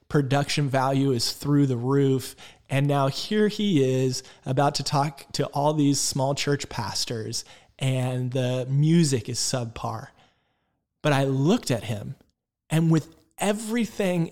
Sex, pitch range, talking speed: male, 130-160 Hz, 140 wpm